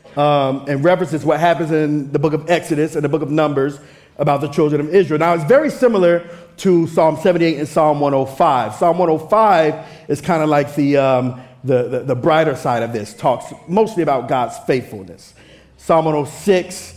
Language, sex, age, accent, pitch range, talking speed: English, male, 50-69, American, 135-175 Hz, 185 wpm